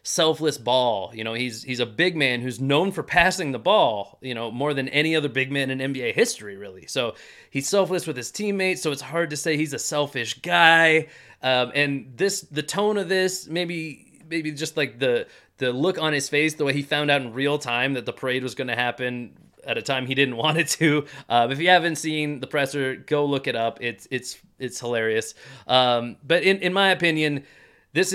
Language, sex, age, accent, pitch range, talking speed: English, male, 30-49, American, 125-155 Hz, 220 wpm